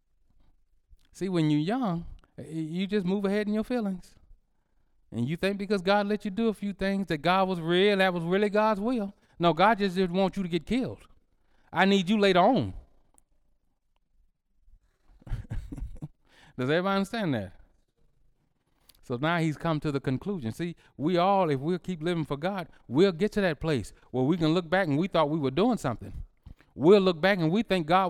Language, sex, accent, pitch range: English, male, American, 160-235 Hz